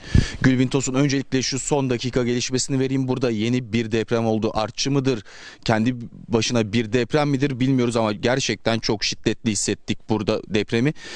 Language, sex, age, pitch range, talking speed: Turkish, male, 30-49, 105-135 Hz, 150 wpm